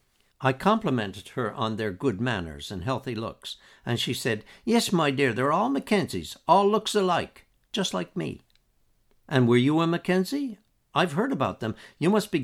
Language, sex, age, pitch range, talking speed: English, male, 60-79, 115-150 Hz, 180 wpm